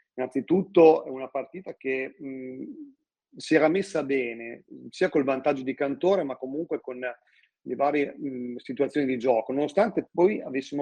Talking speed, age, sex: 150 wpm, 40-59, male